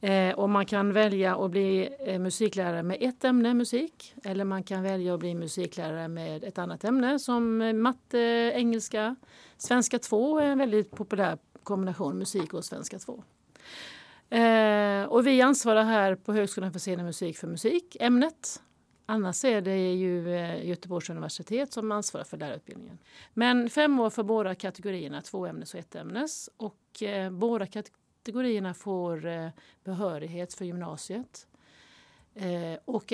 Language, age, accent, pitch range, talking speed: Swedish, 50-69, native, 185-230 Hz, 140 wpm